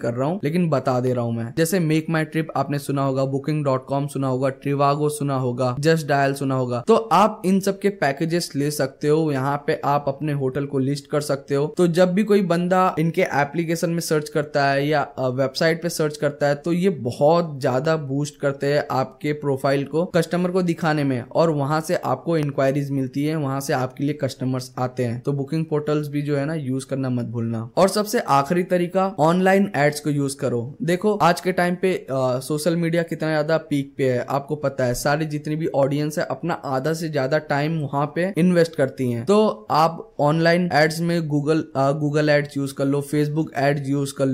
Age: 10-29